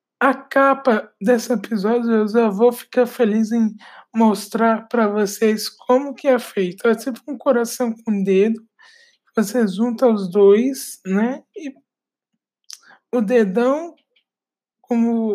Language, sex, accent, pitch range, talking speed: Portuguese, male, Brazilian, 210-255 Hz, 130 wpm